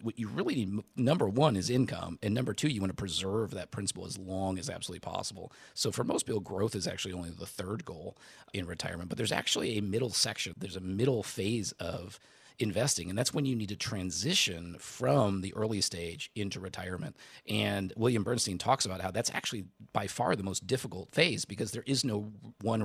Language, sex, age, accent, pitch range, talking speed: English, male, 40-59, American, 95-120 Hz, 205 wpm